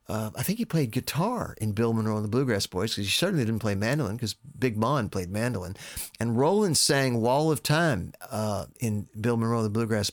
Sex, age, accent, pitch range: male, 50-69, American, 110-135 Hz